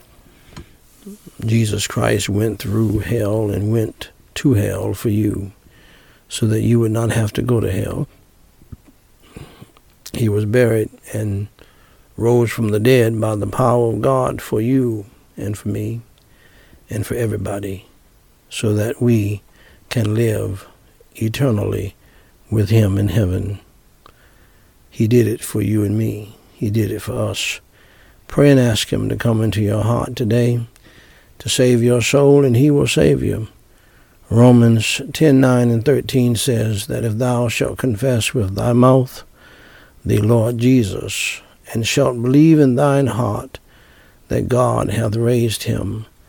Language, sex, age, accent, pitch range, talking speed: English, male, 60-79, American, 105-125 Hz, 145 wpm